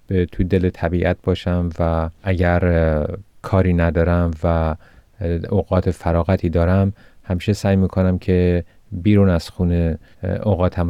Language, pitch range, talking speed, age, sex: Persian, 85-95 Hz, 110 wpm, 30-49, male